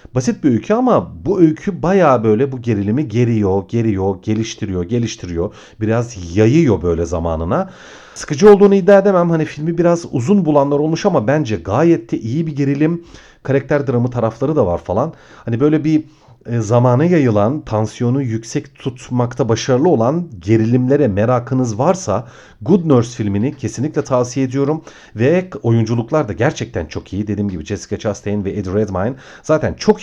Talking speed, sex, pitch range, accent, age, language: 150 wpm, male, 105-150 Hz, native, 40-59, Turkish